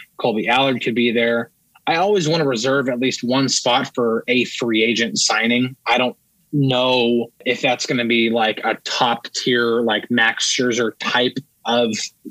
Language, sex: English, male